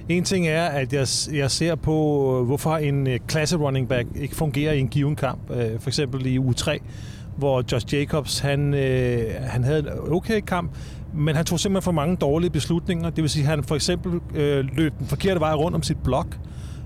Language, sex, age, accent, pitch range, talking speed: Danish, male, 30-49, native, 130-155 Hz, 195 wpm